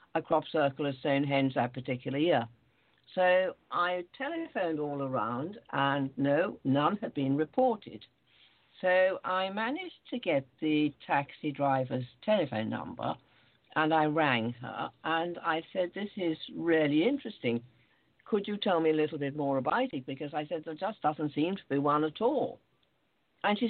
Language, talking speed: English, 165 wpm